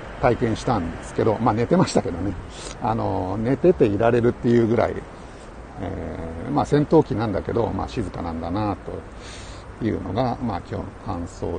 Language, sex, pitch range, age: Japanese, male, 95-125 Hz, 60-79